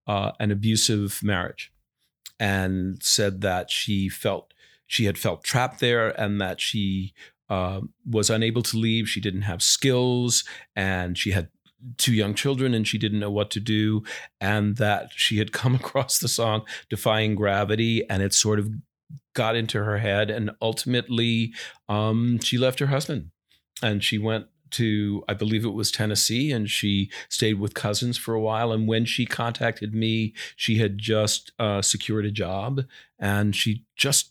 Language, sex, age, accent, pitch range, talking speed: English, male, 40-59, American, 105-120 Hz, 170 wpm